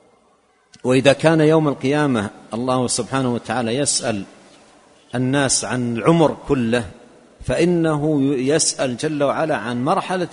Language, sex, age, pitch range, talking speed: Arabic, male, 50-69, 115-155 Hz, 105 wpm